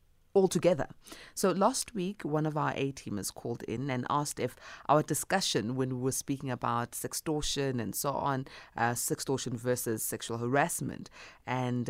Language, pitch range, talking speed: English, 120-170 Hz, 150 wpm